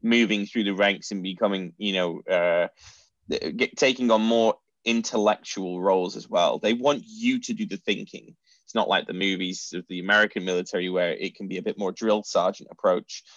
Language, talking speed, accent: English, 190 wpm, British